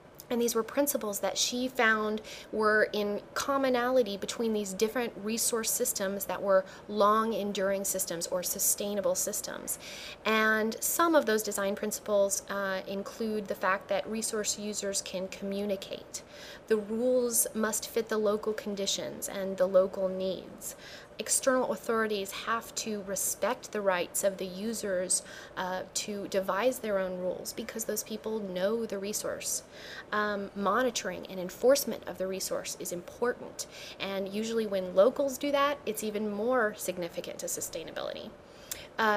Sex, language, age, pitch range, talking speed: female, English, 30-49, 195-225 Hz, 140 wpm